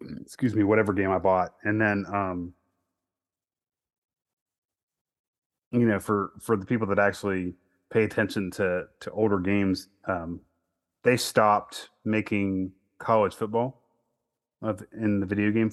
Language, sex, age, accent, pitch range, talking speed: English, male, 30-49, American, 90-105 Hz, 125 wpm